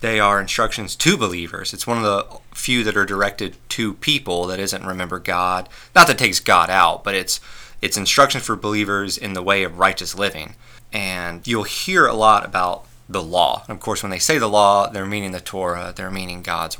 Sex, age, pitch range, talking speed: male, 30-49, 90-120 Hz, 210 wpm